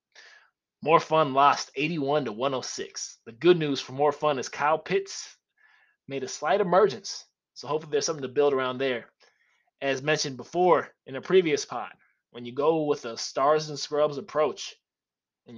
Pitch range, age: 130-155 Hz, 20-39